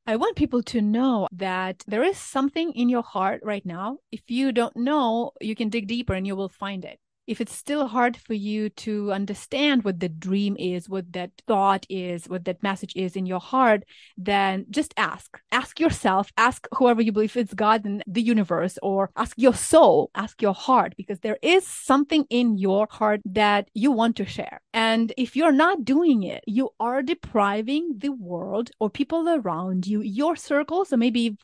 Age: 30-49